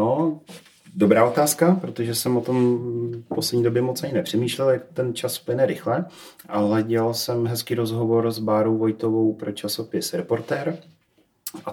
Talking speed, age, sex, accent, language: 155 wpm, 30-49, male, native, Czech